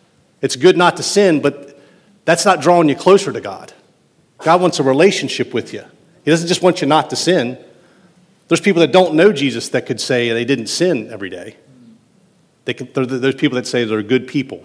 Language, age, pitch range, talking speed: English, 40-59, 125-175 Hz, 195 wpm